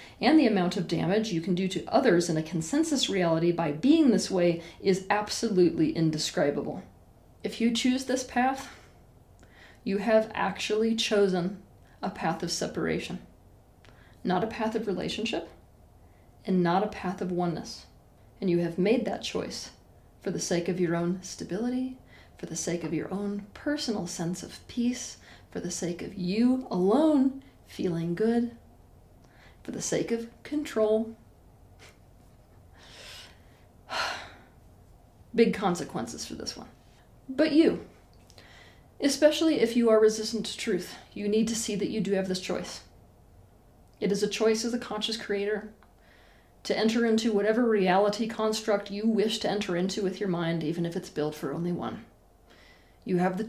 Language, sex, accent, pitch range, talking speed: English, female, American, 160-220 Hz, 155 wpm